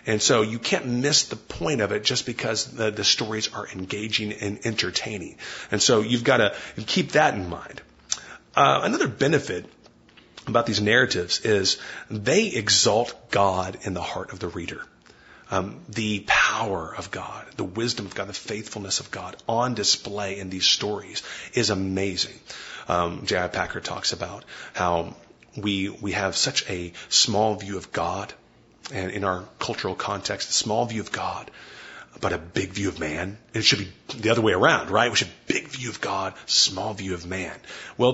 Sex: male